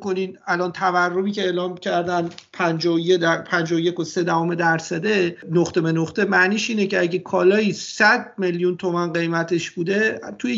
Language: Persian